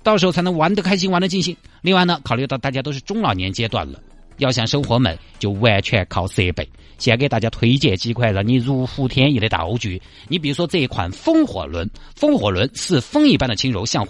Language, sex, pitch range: Chinese, male, 95-155 Hz